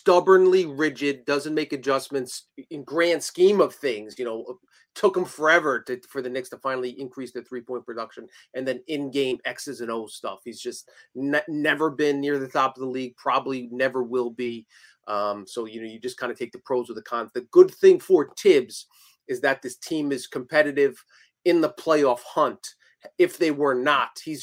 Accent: American